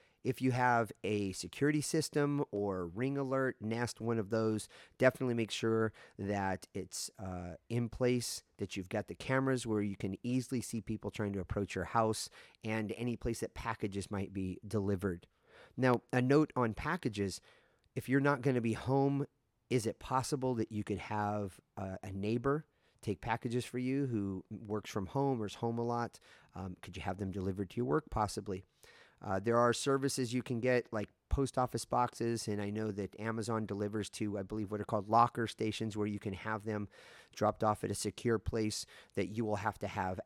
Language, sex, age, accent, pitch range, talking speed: English, male, 30-49, American, 100-125 Hz, 195 wpm